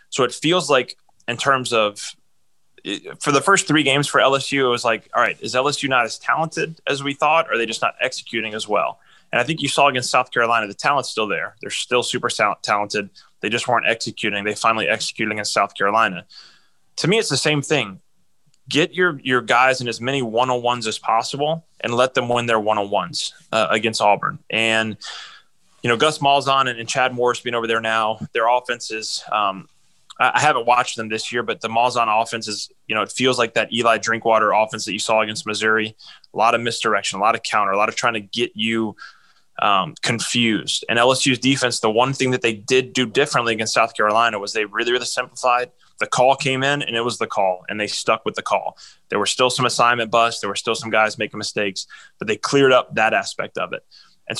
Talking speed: 225 wpm